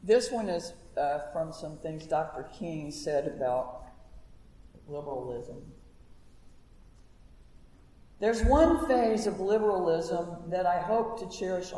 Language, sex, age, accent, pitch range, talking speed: English, female, 50-69, American, 150-195 Hz, 110 wpm